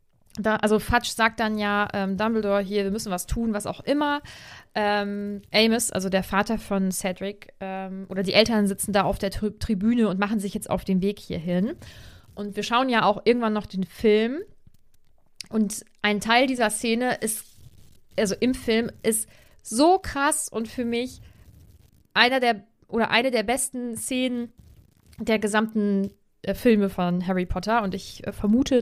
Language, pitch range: German, 195-235 Hz